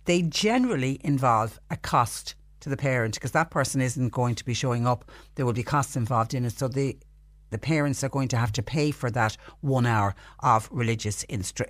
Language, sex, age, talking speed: English, female, 60-79, 210 wpm